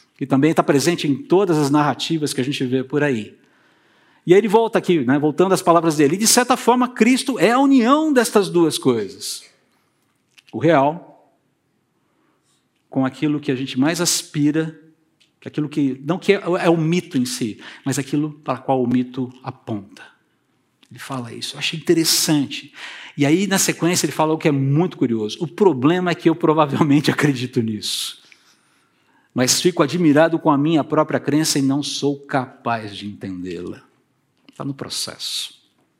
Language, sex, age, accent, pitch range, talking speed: Portuguese, male, 50-69, Brazilian, 135-200 Hz, 165 wpm